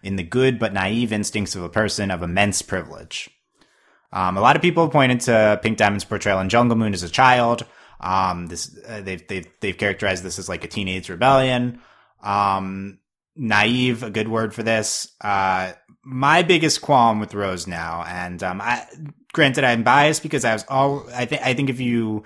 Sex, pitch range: male, 95-125 Hz